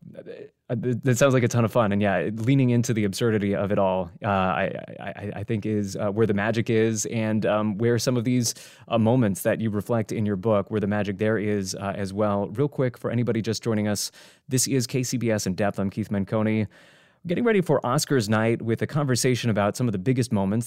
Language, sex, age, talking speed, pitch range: English, male, 20-39, 225 wpm, 105-125 Hz